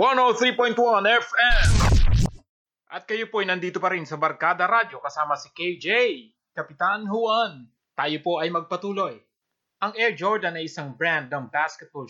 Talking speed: 145 wpm